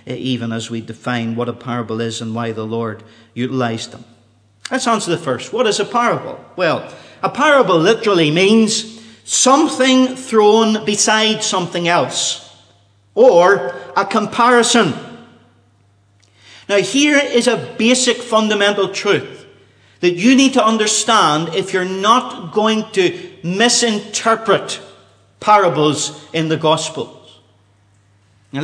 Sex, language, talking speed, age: male, English, 120 wpm, 40-59